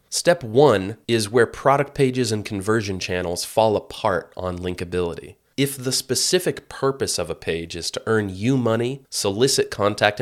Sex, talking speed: male, 160 wpm